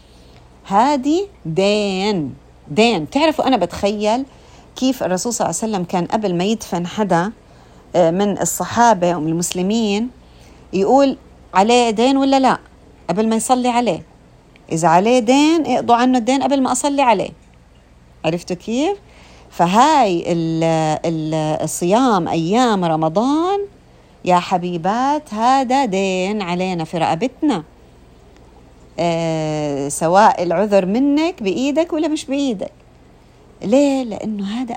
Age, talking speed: 40-59, 115 wpm